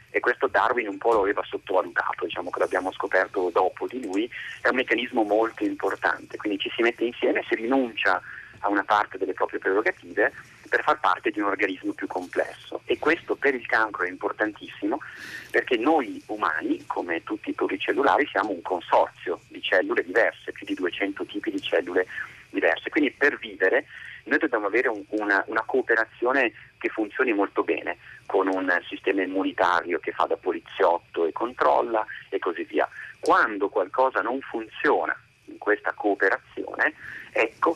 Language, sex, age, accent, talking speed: Italian, male, 40-59, native, 160 wpm